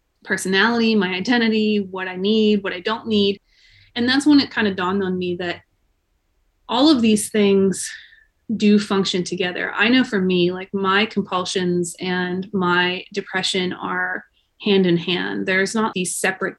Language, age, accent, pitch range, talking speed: English, 20-39, American, 190-225 Hz, 165 wpm